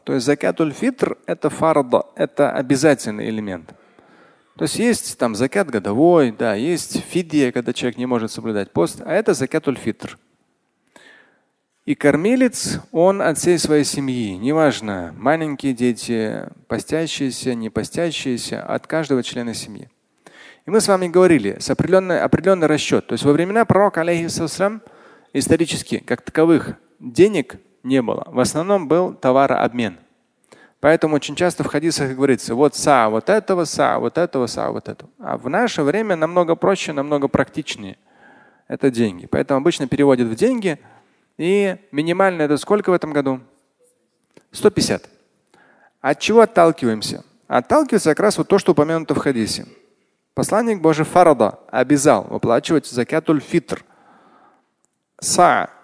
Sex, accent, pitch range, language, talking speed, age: male, native, 130-175 Hz, Russian, 140 wpm, 30-49